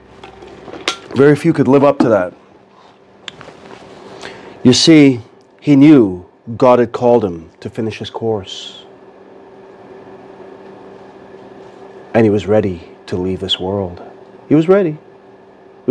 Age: 40-59